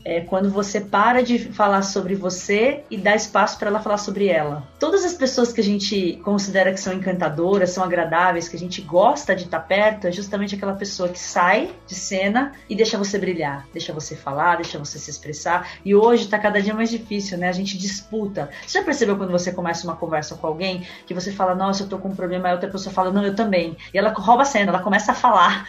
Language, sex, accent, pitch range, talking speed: Portuguese, female, Brazilian, 180-245 Hz, 235 wpm